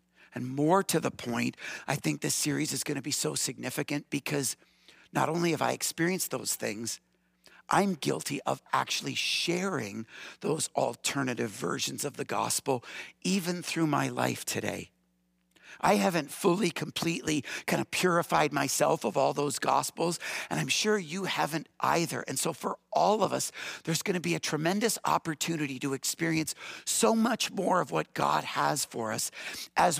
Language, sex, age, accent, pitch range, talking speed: English, male, 50-69, American, 125-175 Hz, 165 wpm